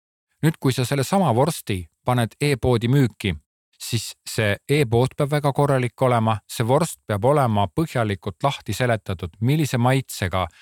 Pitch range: 100-135 Hz